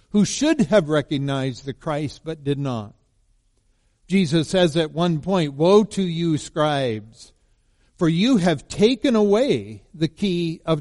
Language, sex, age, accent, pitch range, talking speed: English, male, 50-69, American, 115-170 Hz, 145 wpm